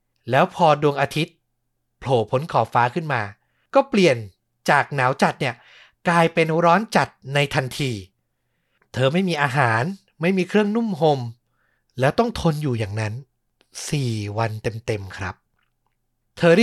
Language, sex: Thai, male